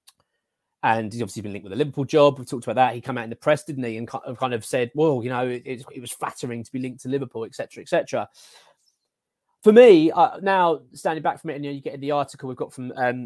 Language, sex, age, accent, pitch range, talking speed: English, male, 20-39, British, 130-165 Hz, 270 wpm